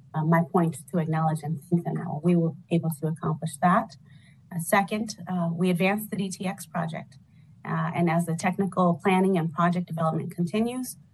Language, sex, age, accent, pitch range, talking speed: English, female, 30-49, American, 155-180 Hz, 170 wpm